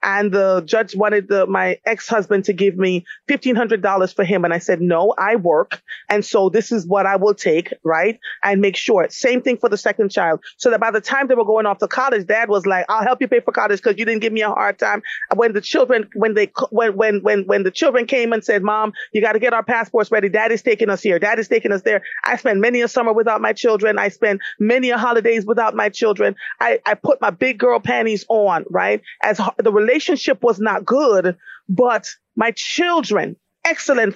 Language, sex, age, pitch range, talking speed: English, female, 30-49, 205-255 Hz, 235 wpm